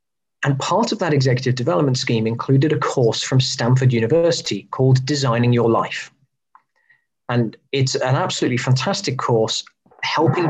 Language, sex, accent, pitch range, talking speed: English, male, British, 125-145 Hz, 135 wpm